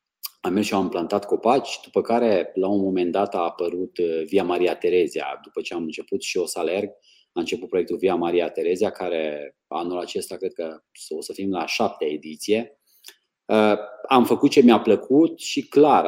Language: Romanian